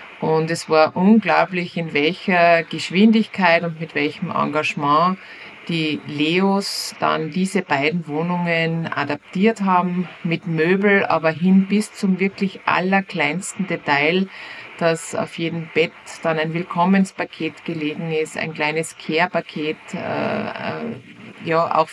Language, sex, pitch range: German, female, 160-195 Hz